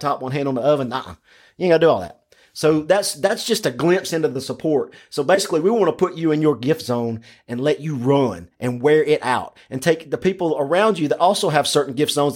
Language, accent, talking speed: English, American, 255 wpm